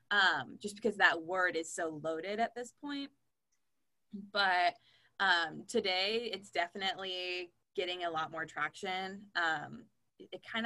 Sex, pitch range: female, 170-205 Hz